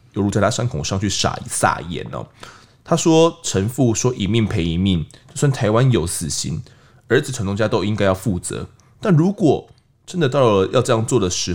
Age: 20-39